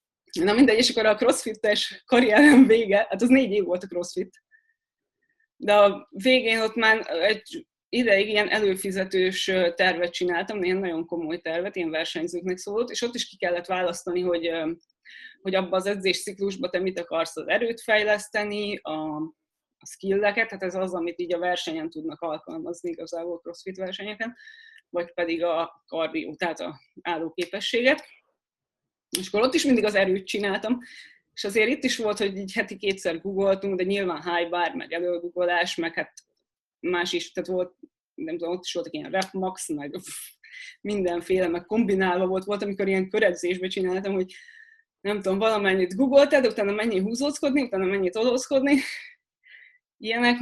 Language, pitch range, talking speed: Hungarian, 180-250 Hz, 155 wpm